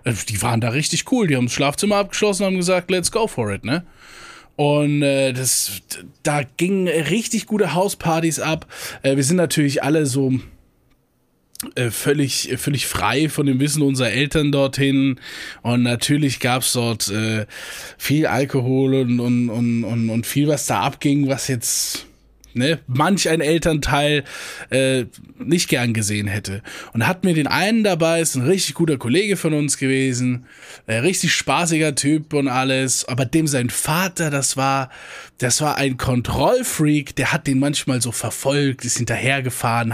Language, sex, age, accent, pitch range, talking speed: German, male, 20-39, German, 125-165 Hz, 160 wpm